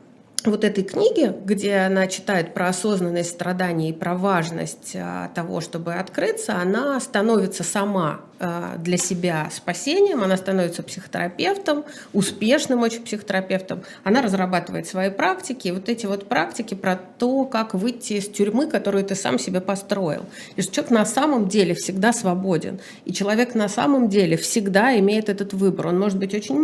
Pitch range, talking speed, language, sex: 185-235 Hz, 145 wpm, Russian, female